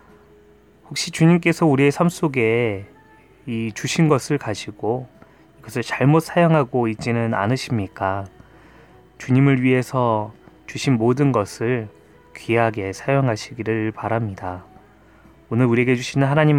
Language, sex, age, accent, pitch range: Korean, male, 20-39, native, 110-140 Hz